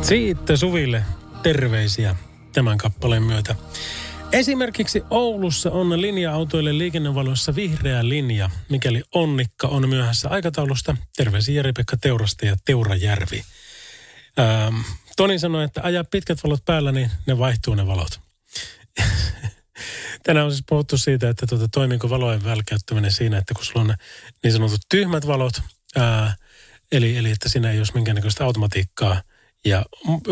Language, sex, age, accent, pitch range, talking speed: Finnish, male, 30-49, native, 110-150 Hz, 130 wpm